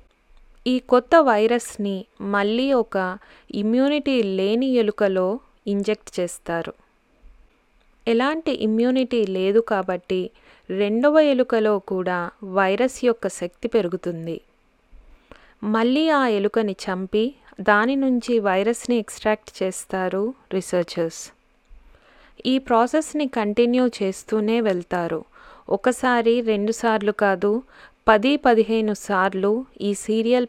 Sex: female